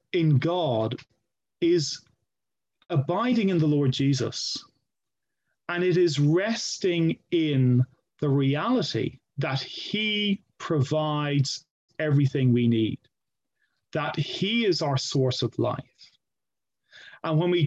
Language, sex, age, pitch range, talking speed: English, male, 40-59, 135-175 Hz, 105 wpm